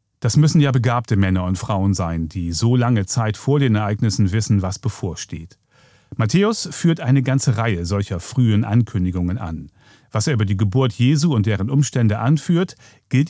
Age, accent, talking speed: 40-59, German, 170 wpm